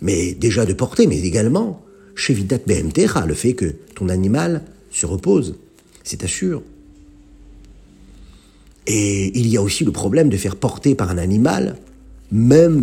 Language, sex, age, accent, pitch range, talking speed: French, male, 50-69, French, 105-160 Hz, 140 wpm